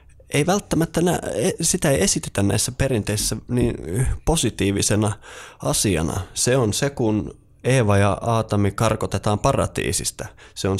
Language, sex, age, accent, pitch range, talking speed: Finnish, male, 20-39, native, 90-110 Hz, 120 wpm